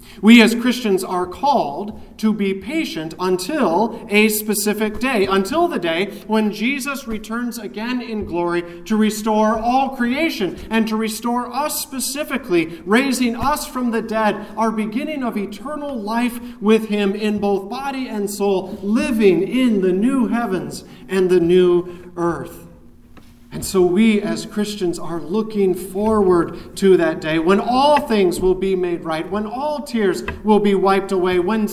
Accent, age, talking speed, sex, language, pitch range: American, 40-59, 155 wpm, male, English, 175-220 Hz